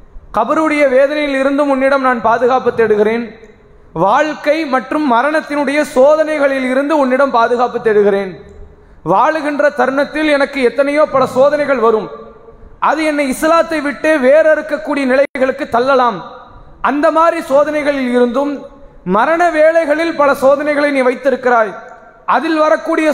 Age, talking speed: 20-39, 100 wpm